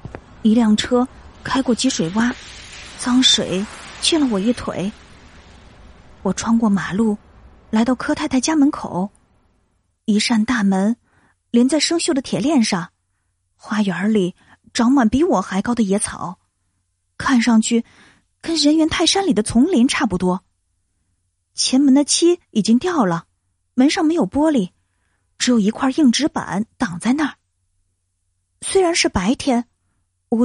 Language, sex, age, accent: Chinese, female, 20-39, native